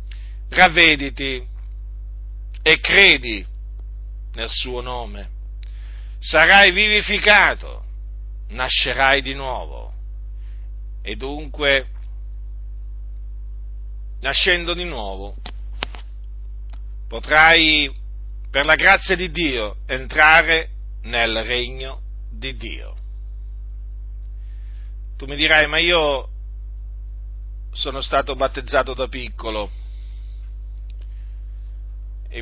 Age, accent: 50-69, native